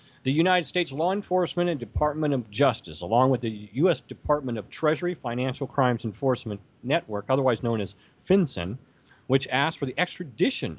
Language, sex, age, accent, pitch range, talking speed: English, male, 40-59, American, 115-160 Hz, 160 wpm